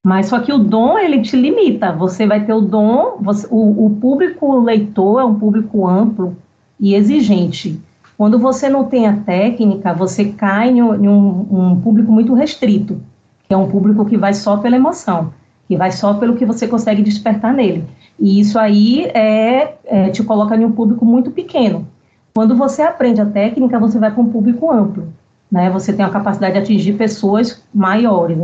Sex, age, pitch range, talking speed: female, 40-59, 200-265 Hz, 190 wpm